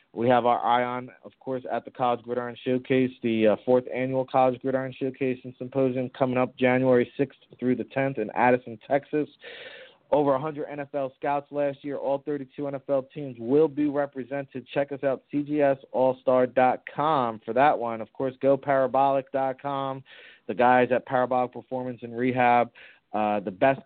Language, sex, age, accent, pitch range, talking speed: English, male, 30-49, American, 115-135 Hz, 160 wpm